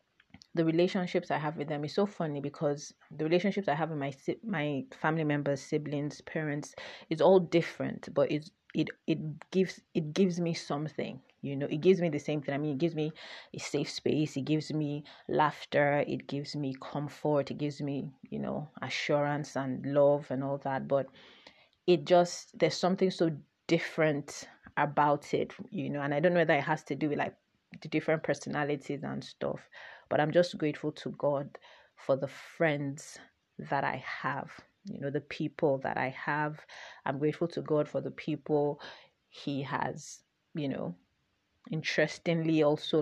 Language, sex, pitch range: English, female, 145-165 Hz